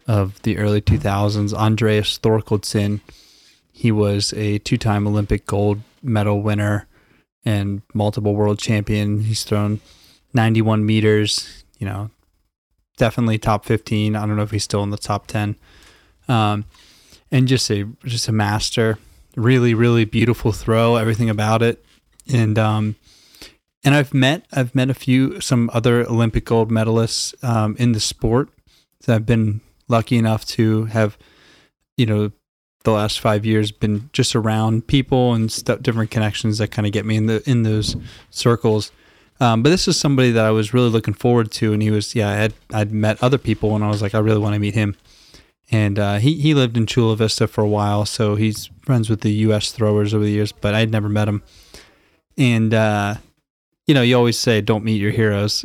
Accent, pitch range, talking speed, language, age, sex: American, 105-115 Hz, 180 wpm, English, 20-39, male